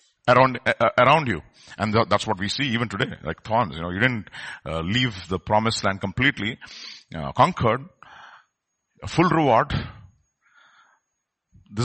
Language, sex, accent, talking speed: English, male, Indian, 150 wpm